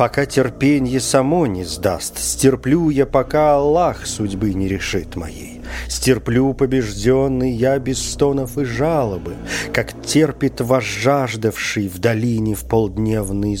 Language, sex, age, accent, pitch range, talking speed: Russian, male, 40-59, native, 95-135 Hz, 120 wpm